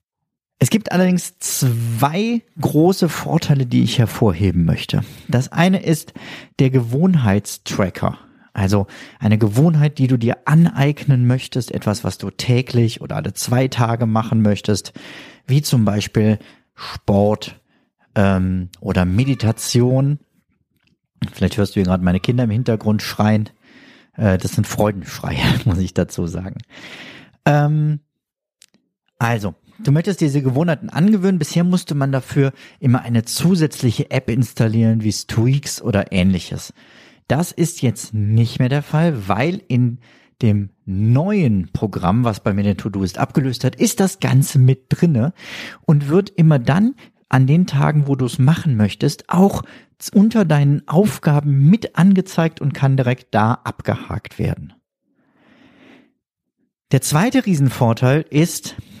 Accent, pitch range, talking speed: German, 110-160 Hz, 130 wpm